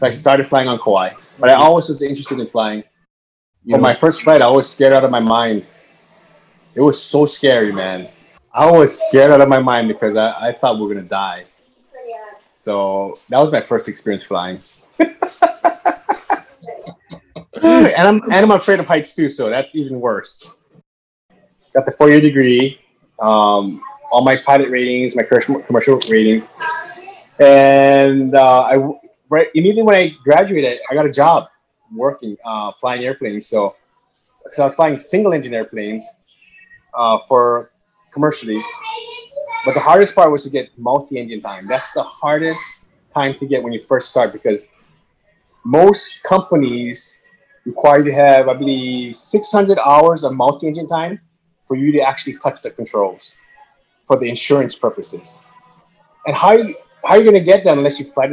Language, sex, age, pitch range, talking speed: English, male, 20-39, 125-190 Hz, 165 wpm